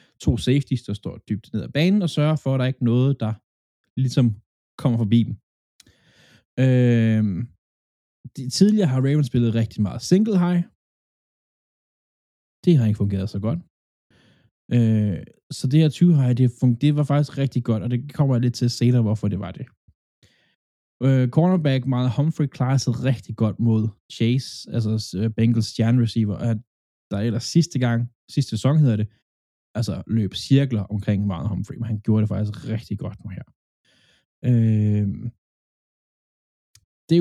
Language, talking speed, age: Danish, 155 wpm, 20-39